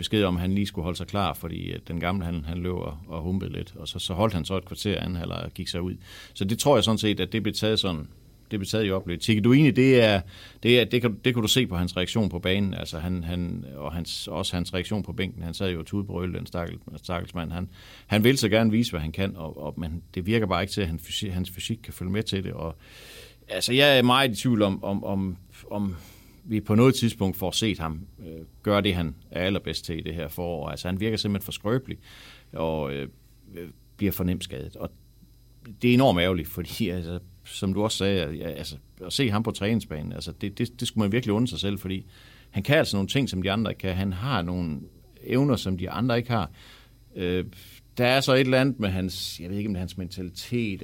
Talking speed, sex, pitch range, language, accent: 255 wpm, male, 90-110 Hz, Danish, native